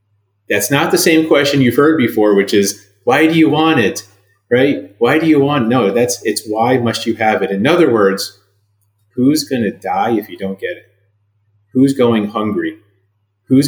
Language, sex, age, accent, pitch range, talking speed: English, male, 30-49, American, 100-130 Hz, 195 wpm